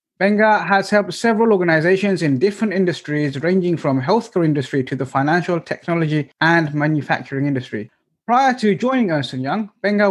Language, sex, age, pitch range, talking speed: English, male, 20-39, 145-190 Hz, 150 wpm